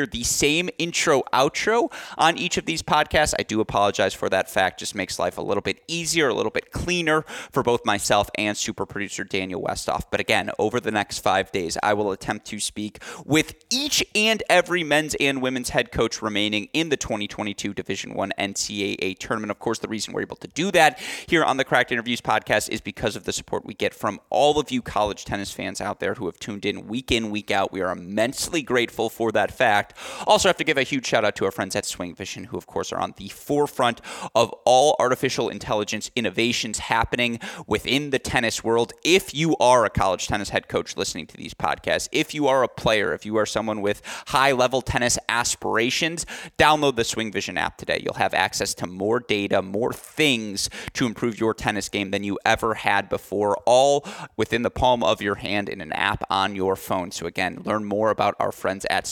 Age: 30-49